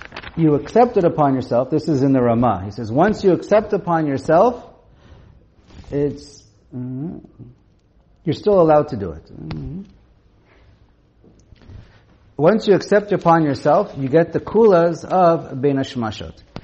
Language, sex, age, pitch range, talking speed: English, male, 50-69, 120-165 Hz, 135 wpm